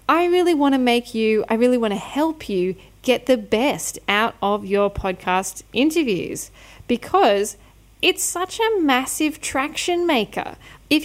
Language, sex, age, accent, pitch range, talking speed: English, female, 10-29, Australian, 180-230 Hz, 150 wpm